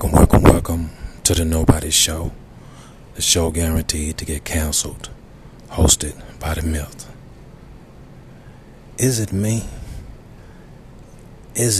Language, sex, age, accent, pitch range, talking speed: English, male, 40-59, American, 75-100 Hz, 105 wpm